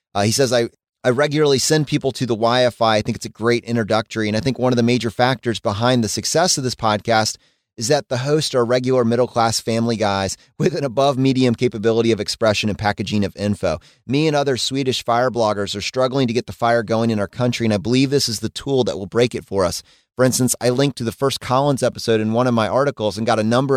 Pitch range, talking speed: 105-130 Hz, 245 wpm